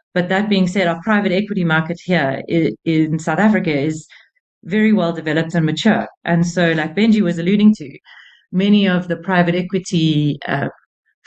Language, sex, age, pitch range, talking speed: English, female, 30-49, 160-190 Hz, 165 wpm